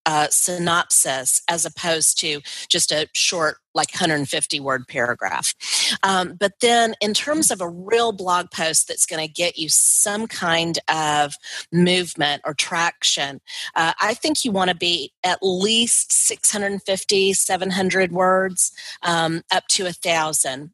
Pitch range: 150-190 Hz